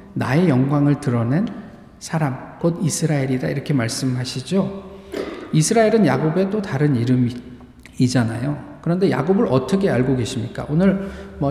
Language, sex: Korean, male